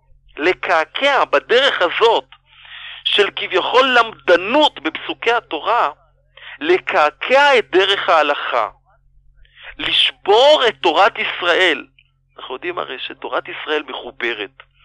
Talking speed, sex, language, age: 90 wpm, male, Hebrew, 50-69